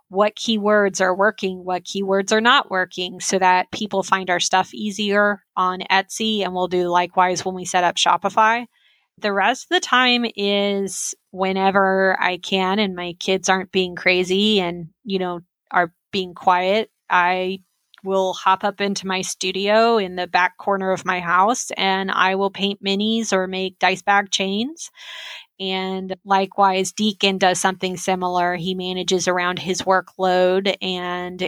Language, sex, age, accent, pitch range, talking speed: English, female, 20-39, American, 185-205 Hz, 160 wpm